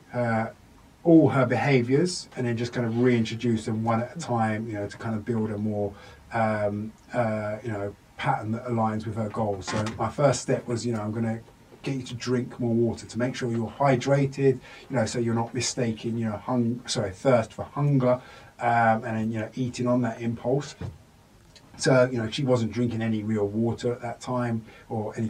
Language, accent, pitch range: English, British, 110-125 Hz